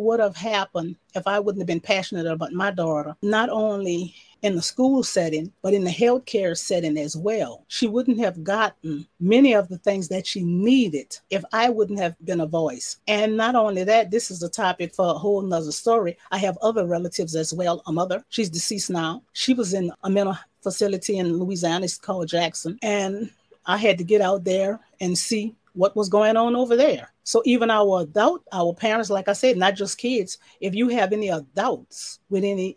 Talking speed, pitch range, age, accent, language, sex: 205 wpm, 185-230 Hz, 40-59, American, English, female